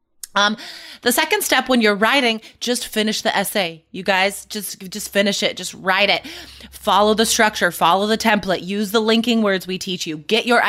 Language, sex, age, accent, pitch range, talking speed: English, female, 20-39, American, 190-260 Hz, 195 wpm